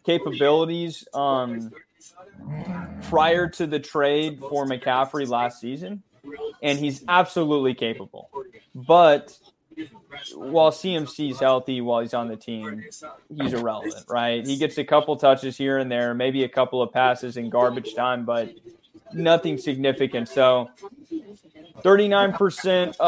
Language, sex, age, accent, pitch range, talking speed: English, male, 20-39, American, 130-165 Hz, 125 wpm